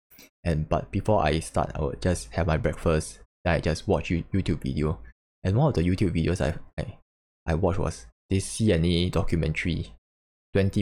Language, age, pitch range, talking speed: English, 10-29, 75-95 Hz, 170 wpm